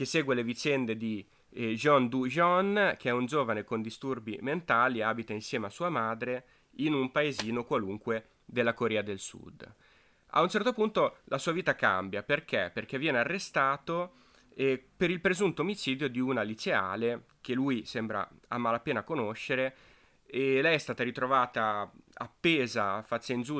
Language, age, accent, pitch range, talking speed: Italian, 30-49, native, 110-145 Hz, 165 wpm